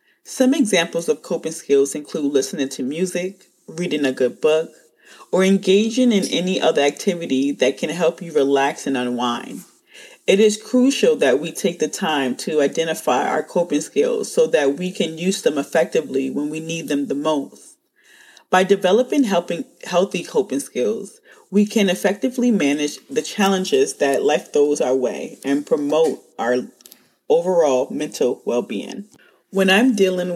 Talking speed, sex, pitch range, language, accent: 155 wpm, female, 145-210 Hz, English, American